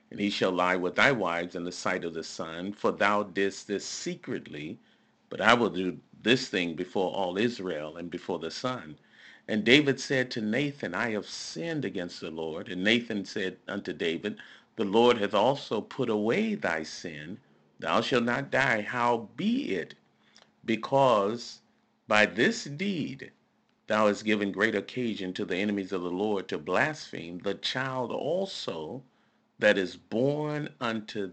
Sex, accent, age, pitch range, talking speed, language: male, American, 40-59, 95-120 Hz, 165 wpm, English